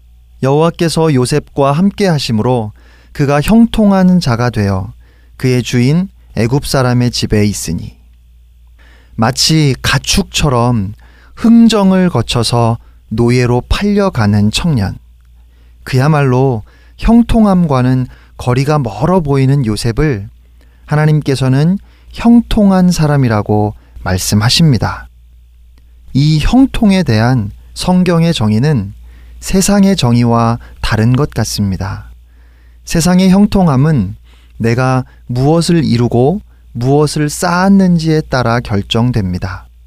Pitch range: 100-160 Hz